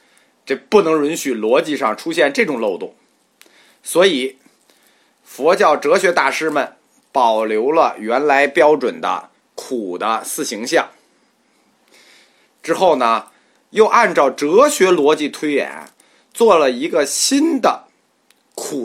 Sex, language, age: male, Chinese, 30-49